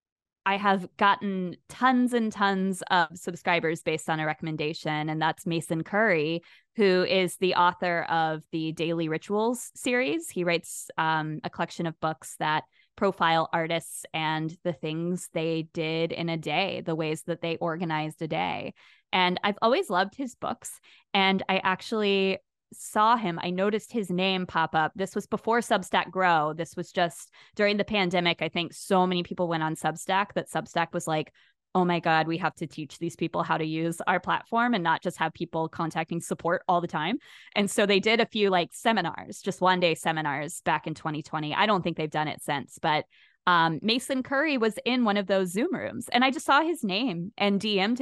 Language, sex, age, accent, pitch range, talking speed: English, female, 20-39, American, 160-200 Hz, 195 wpm